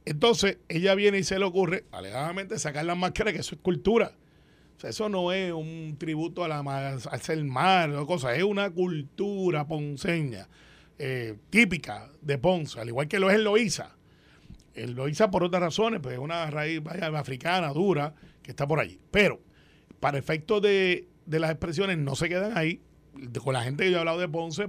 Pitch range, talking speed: 150-190 Hz, 200 wpm